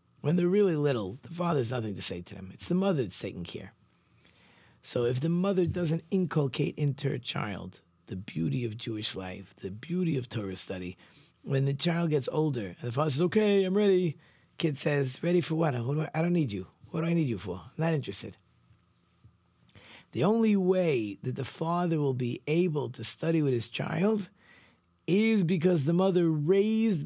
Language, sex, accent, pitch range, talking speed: English, male, American, 110-165 Hz, 195 wpm